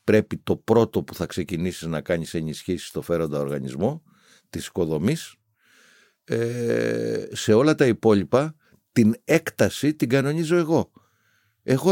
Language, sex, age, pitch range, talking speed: Greek, male, 50-69, 95-145 Hz, 125 wpm